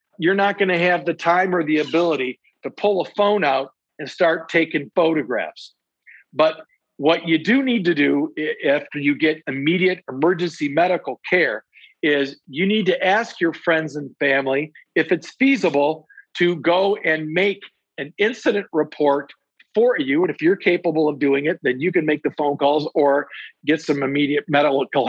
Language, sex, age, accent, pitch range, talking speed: English, male, 50-69, American, 145-180 Hz, 170 wpm